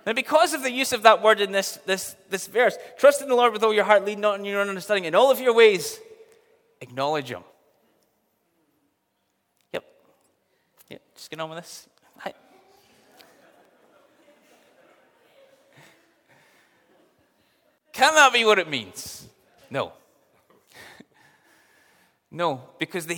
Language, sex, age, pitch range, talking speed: English, male, 30-49, 140-225 Hz, 135 wpm